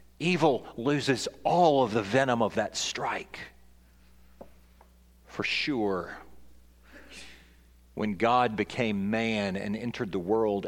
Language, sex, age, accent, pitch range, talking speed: English, male, 40-59, American, 95-155 Hz, 105 wpm